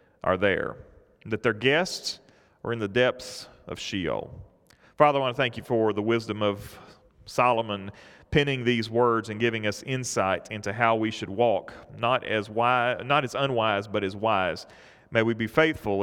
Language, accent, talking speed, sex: English, American, 175 wpm, male